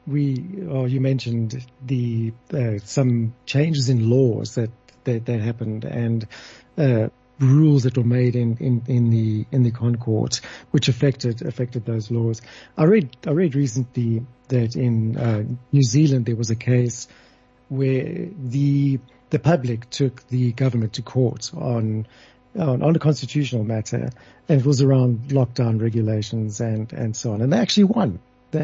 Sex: male